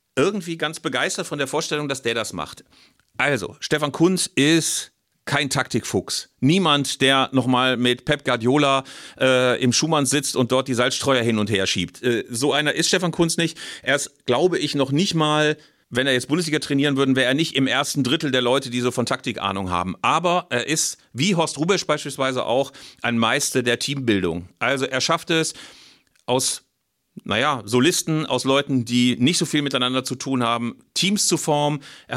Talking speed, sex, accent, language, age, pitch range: 190 wpm, male, German, German, 40-59, 125-150 Hz